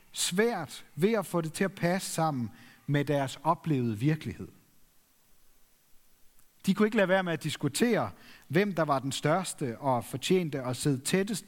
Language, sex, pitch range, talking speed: Danish, male, 130-185 Hz, 160 wpm